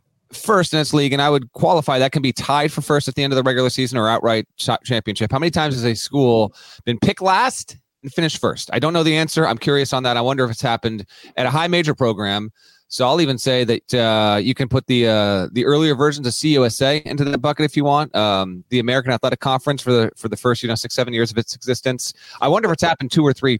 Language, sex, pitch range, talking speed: English, male, 115-145 Hz, 260 wpm